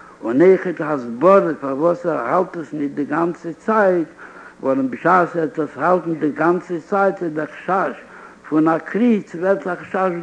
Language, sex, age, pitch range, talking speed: Hebrew, male, 60-79, 150-185 Hz, 155 wpm